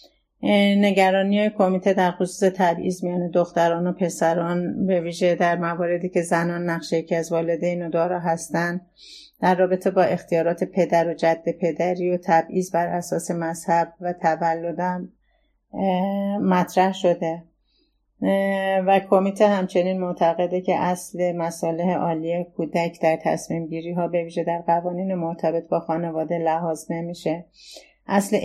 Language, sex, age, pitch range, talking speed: Persian, female, 30-49, 165-185 Hz, 135 wpm